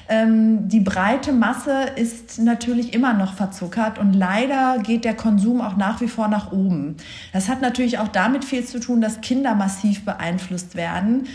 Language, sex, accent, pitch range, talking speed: German, female, German, 200-235 Hz, 170 wpm